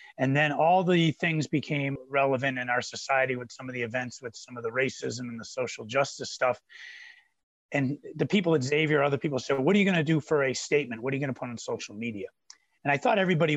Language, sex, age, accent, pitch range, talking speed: English, male, 30-49, American, 125-150 Hz, 245 wpm